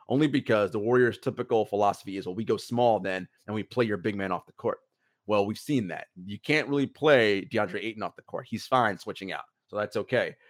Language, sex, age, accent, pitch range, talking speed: English, male, 30-49, American, 110-145 Hz, 235 wpm